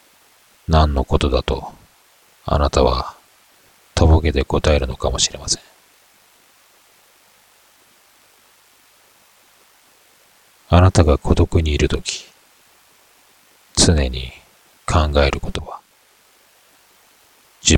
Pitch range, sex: 70-85 Hz, male